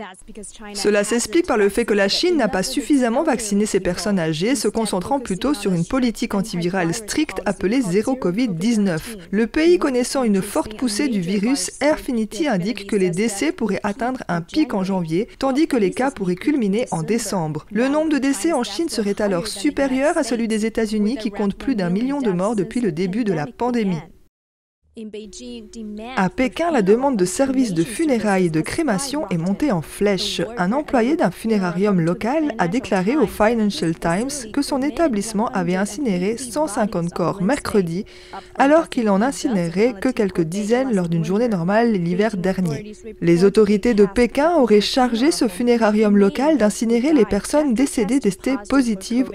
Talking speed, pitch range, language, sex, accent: 170 wpm, 195-260 Hz, French, female, French